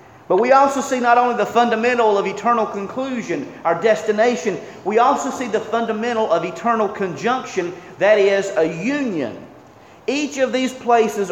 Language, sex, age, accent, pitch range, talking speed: English, male, 40-59, American, 185-250 Hz, 155 wpm